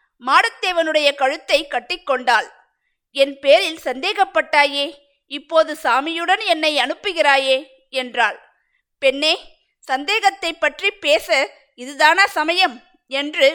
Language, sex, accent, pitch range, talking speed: Tamil, female, native, 275-355 Hz, 80 wpm